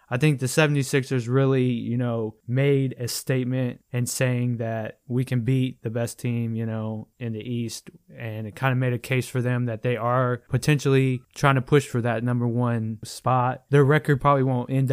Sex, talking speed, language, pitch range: male, 200 wpm, English, 115-130 Hz